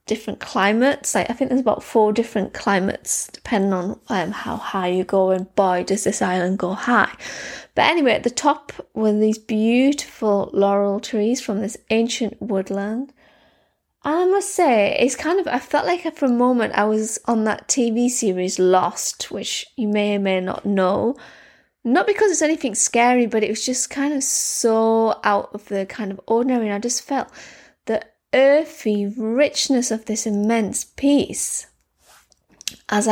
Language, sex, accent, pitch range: English, female, British, 205-260 Hz